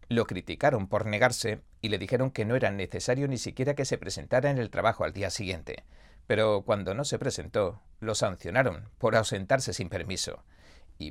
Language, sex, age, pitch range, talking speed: Spanish, male, 40-59, 95-135 Hz, 185 wpm